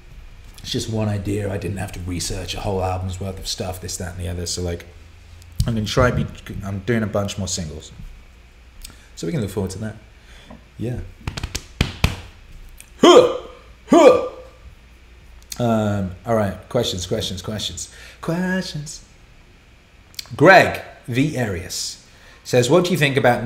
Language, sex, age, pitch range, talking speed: English, male, 30-49, 90-120 Hz, 150 wpm